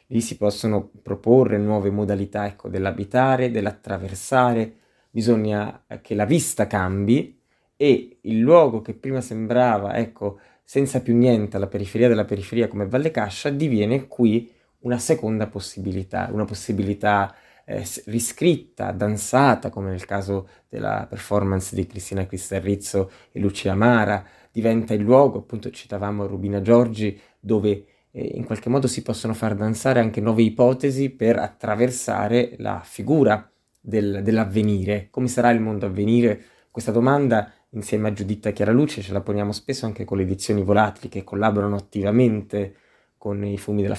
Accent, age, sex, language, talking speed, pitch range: native, 20-39, male, Italian, 140 wpm, 100-120 Hz